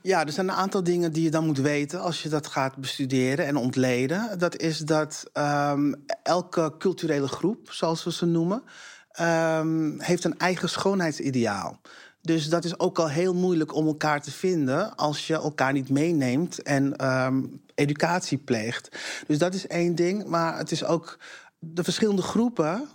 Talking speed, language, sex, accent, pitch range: 175 wpm, Dutch, male, Dutch, 150-190 Hz